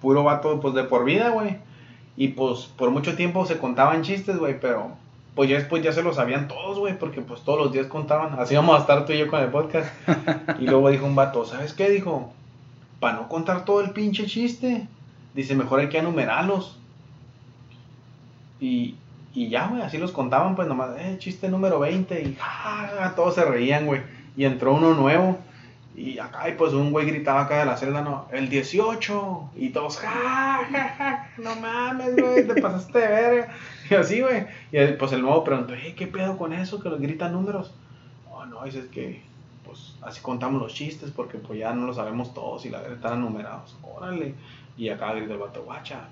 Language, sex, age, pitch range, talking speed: Spanish, male, 30-49, 130-185 Hz, 210 wpm